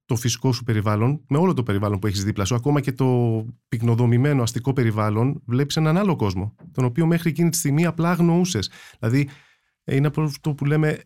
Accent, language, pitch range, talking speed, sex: native, Greek, 115-165 Hz, 195 wpm, male